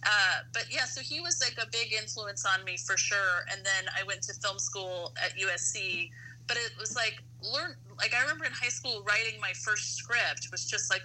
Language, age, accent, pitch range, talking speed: English, 30-49, American, 120-175 Hz, 225 wpm